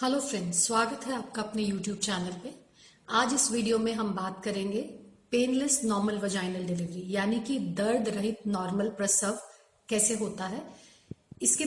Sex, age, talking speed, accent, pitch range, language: female, 40-59, 155 wpm, native, 205-250 Hz, Hindi